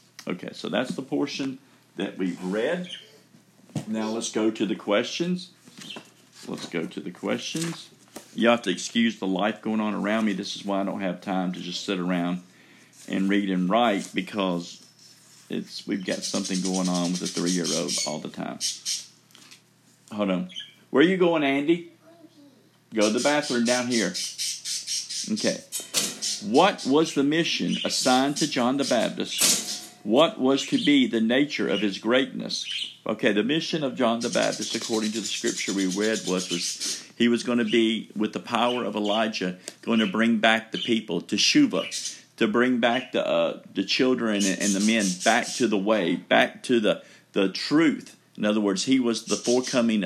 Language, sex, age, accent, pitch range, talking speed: English, male, 50-69, American, 95-130 Hz, 175 wpm